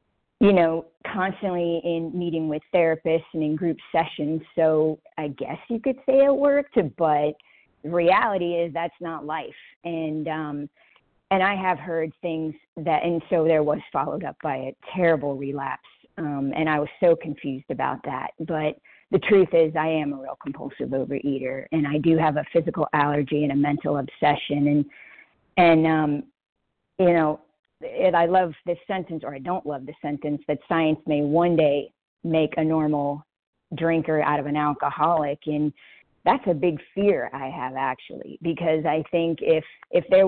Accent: American